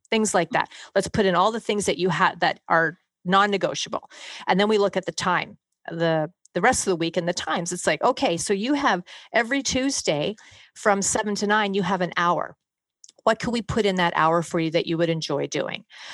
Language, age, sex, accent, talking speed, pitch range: English, 40-59, female, American, 230 wpm, 175-210 Hz